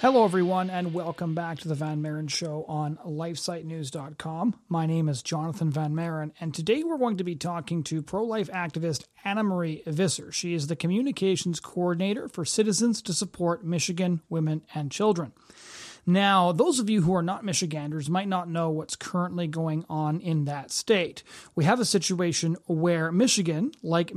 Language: English